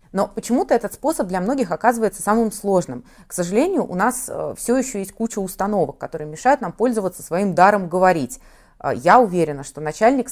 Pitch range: 170-225 Hz